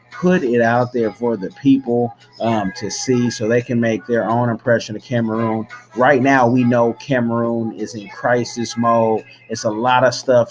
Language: English